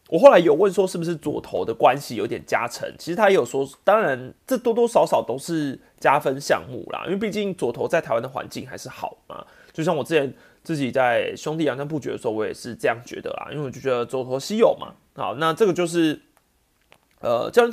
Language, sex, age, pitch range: Chinese, male, 30-49, 150-220 Hz